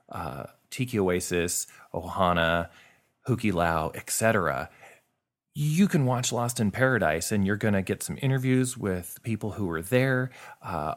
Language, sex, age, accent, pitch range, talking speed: English, male, 30-49, American, 85-115 Hz, 140 wpm